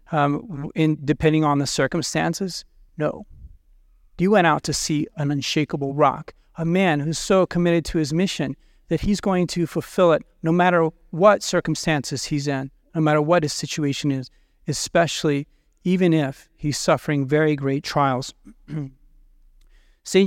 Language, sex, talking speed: English, male, 150 wpm